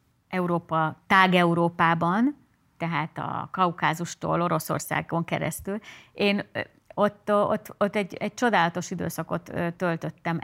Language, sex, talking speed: Hungarian, female, 100 wpm